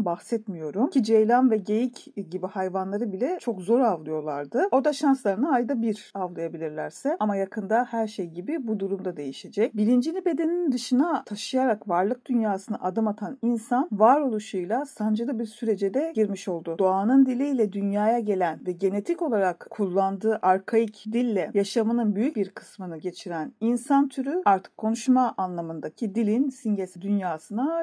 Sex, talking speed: female, 140 wpm